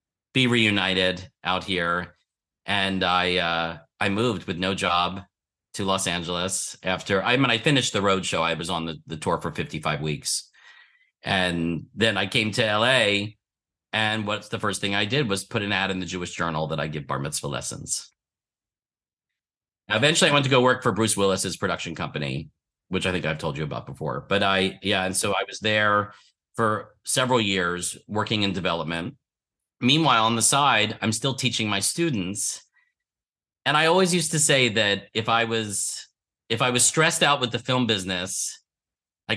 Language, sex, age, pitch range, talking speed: English, male, 40-59, 95-125 Hz, 185 wpm